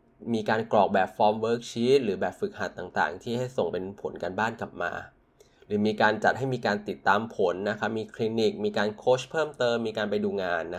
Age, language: 20-39, Thai